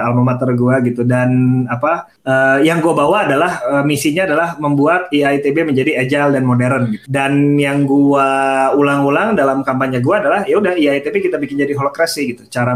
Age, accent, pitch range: 20-39, native, 125-155 Hz